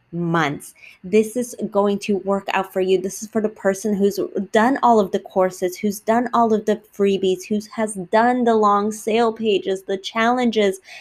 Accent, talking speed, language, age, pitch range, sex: American, 190 wpm, English, 20-39, 200-245 Hz, female